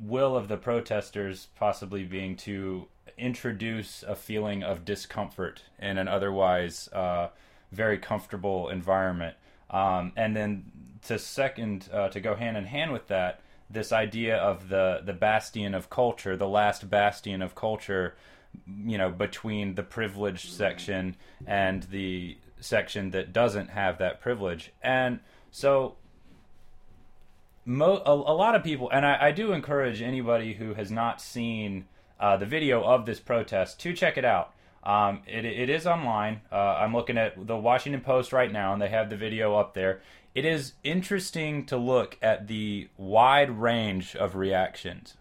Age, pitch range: 30-49, 95-120 Hz